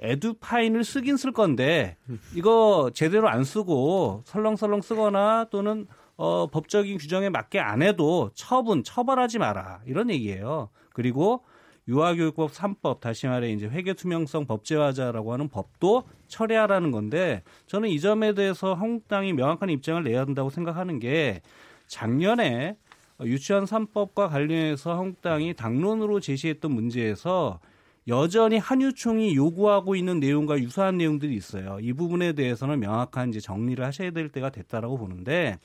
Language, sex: Korean, male